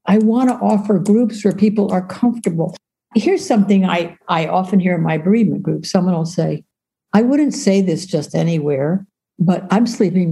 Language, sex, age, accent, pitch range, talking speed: English, female, 60-79, American, 165-215 Hz, 180 wpm